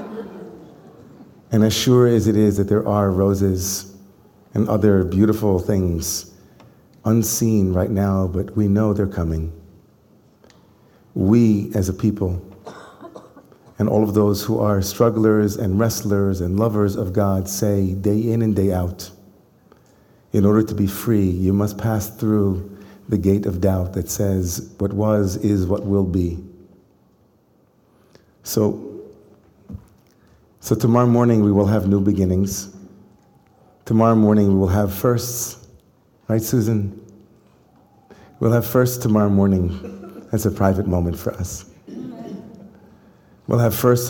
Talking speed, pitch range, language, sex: 130 wpm, 95-110 Hz, English, male